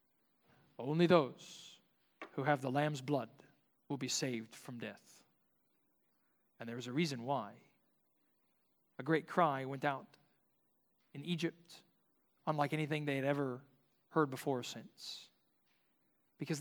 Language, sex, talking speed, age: English, male, 125 wpm, 40-59